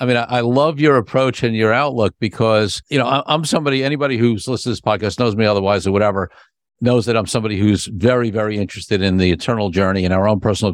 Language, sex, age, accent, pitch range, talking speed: English, male, 50-69, American, 100-120 Hz, 230 wpm